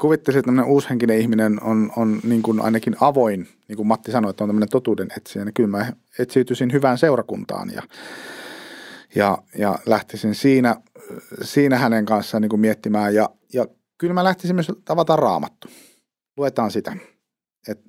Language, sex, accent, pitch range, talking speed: Finnish, male, native, 105-130 Hz, 155 wpm